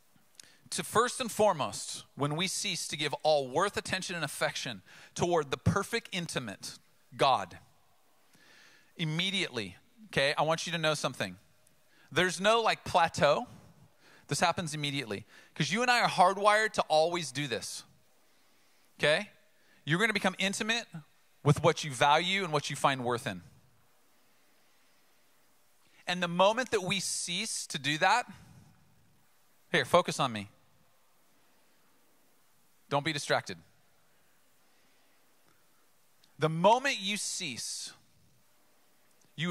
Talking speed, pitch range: 125 wpm, 140-190 Hz